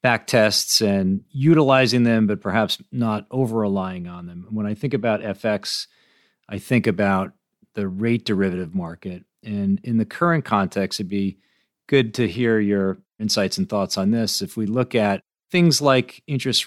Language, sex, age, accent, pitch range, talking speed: English, male, 40-59, American, 95-125 Hz, 160 wpm